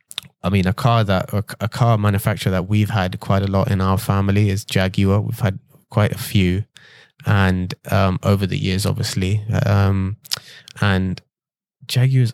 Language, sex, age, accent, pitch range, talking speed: English, male, 20-39, British, 95-120 Hz, 160 wpm